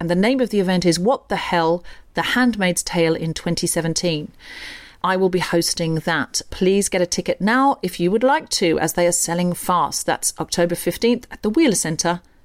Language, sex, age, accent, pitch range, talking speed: English, female, 40-59, British, 175-235 Hz, 200 wpm